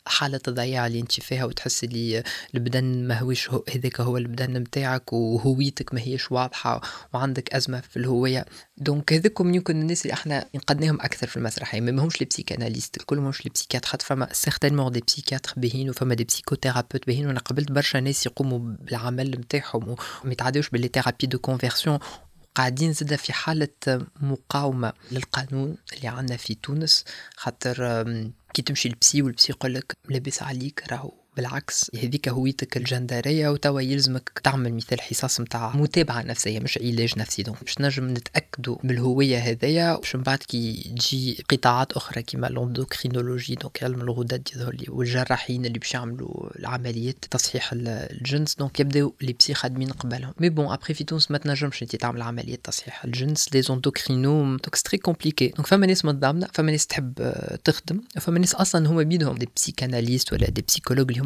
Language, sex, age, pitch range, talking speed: French, female, 20-39, 125-145 Hz, 120 wpm